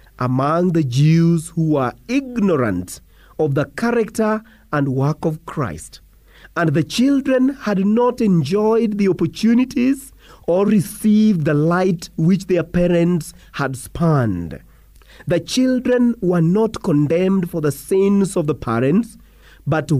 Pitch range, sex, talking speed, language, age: 135-205 Hz, male, 125 wpm, English, 40-59